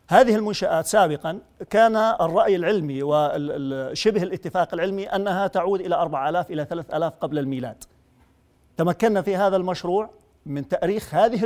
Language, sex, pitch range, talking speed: Arabic, male, 150-185 Hz, 125 wpm